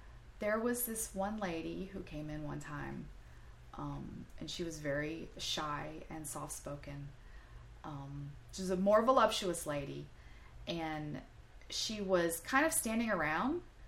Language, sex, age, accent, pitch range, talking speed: English, female, 30-49, American, 145-195 Hz, 140 wpm